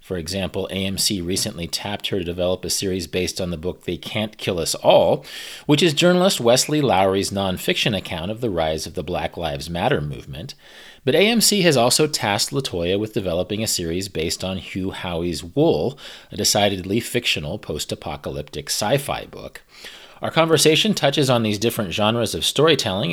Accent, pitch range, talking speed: American, 90-125 Hz, 170 wpm